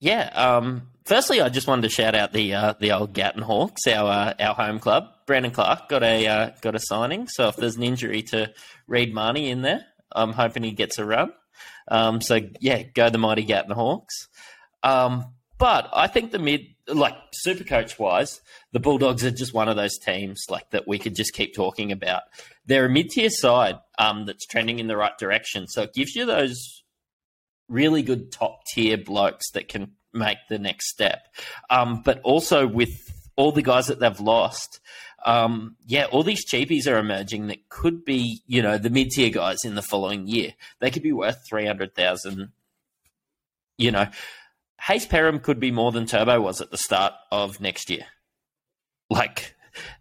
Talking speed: 185 wpm